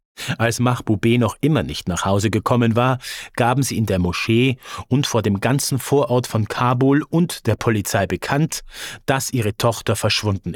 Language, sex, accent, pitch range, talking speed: English, male, German, 110-135 Hz, 165 wpm